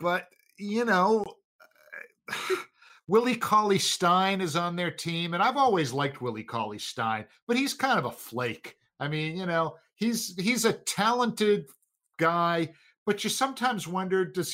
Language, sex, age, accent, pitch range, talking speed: English, male, 50-69, American, 140-220 Hz, 145 wpm